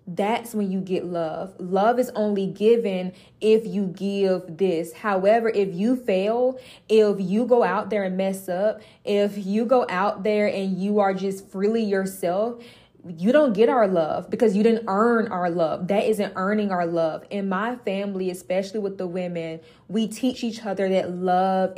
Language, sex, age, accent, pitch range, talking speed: English, female, 10-29, American, 180-210 Hz, 180 wpm